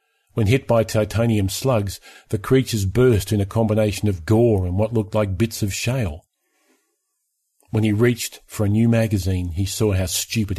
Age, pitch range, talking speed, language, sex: 40-59, 100-120 Hz, 175 wpm, English, male